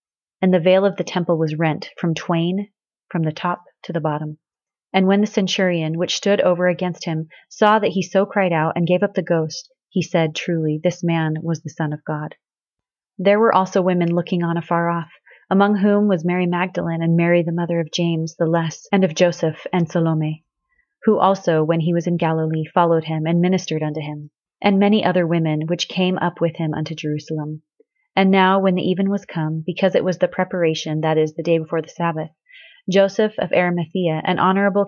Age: 30-49